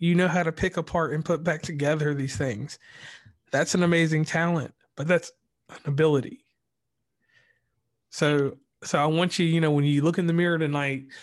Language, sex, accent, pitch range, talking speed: English, male, American, 140-170 Hz, 180 wpm